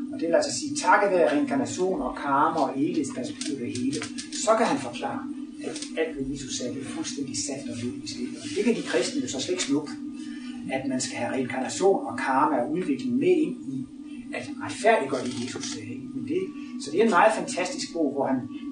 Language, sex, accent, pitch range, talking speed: Danish, male, native, 260-285 Hz, 205 wpm